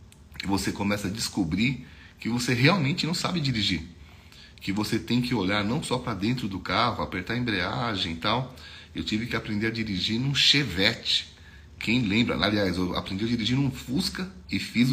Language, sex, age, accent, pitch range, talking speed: Portuguese, male, 40-59, Brazilian, 90-120 Hz, 180 wpm